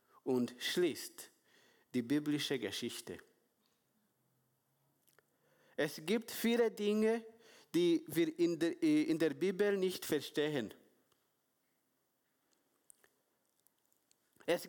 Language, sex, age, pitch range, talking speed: German, male, 50-69, 165-225 Hz, 70 wpm